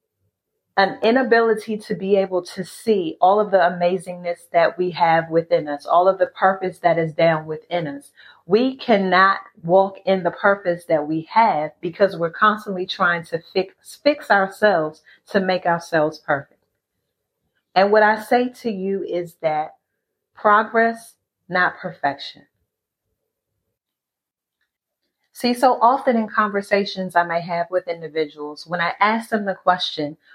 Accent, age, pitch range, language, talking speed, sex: American, 40-59, 170-220 Hz, English, 145 wpm, female